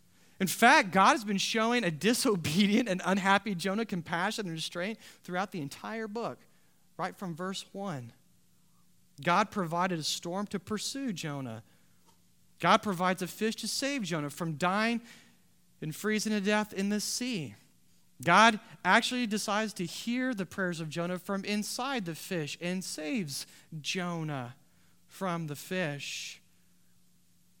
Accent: American